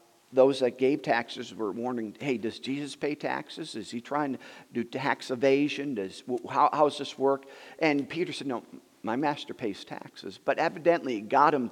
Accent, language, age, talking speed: American, English, 50-69, 185 wpm